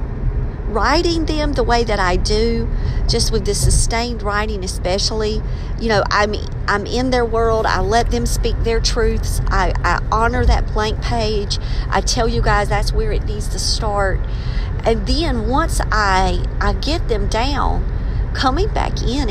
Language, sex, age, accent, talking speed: English, female, 50-69, American, 165 wpm